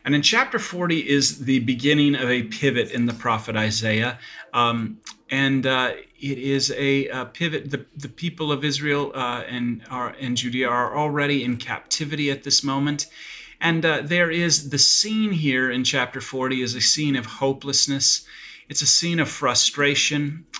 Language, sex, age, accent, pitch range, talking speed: English, male, 30-49, American, 120-145 Hz, 170 wpm